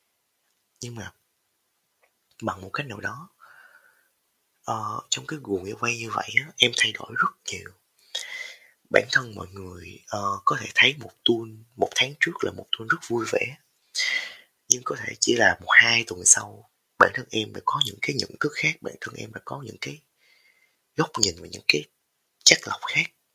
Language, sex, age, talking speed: Vietnamese, male, 20-39, 190 wpm